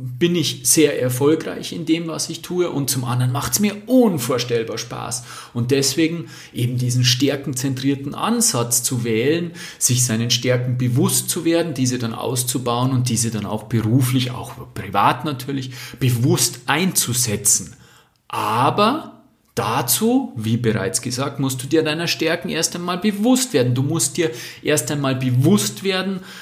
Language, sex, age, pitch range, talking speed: German, male, 40-59, 125-160 Hz, 150 wpm